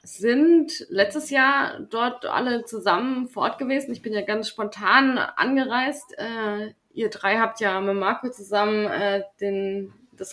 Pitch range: 200-250 Hz